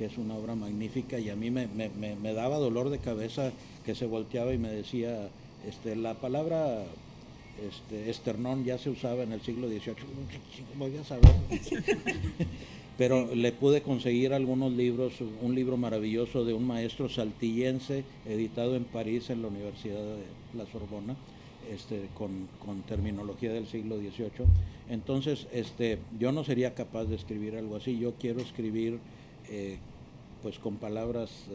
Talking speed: 160 wpm